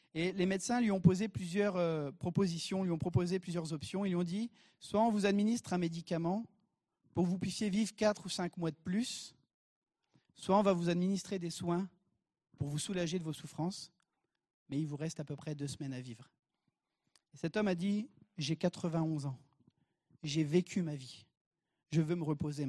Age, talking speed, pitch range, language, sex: 40-59, 195 wpm, 150-185 Hz, French, male